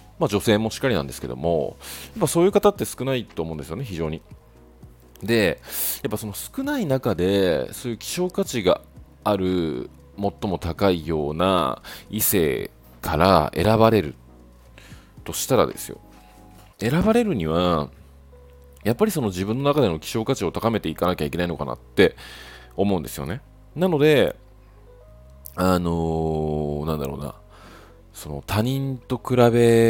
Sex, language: male, Japanese